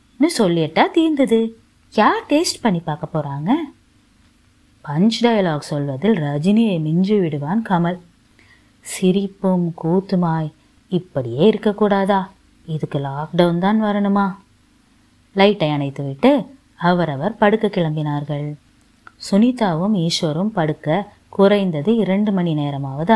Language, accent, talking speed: Tamil, native, 90 wpm